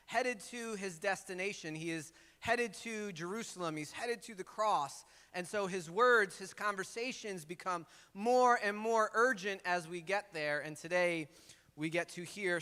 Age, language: 30-49, English